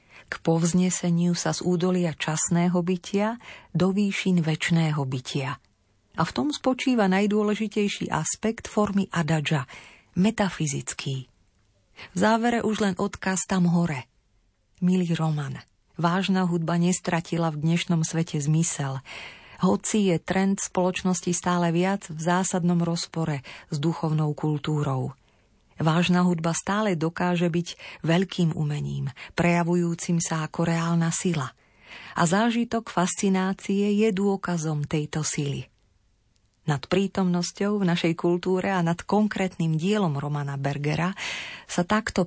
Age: 40-59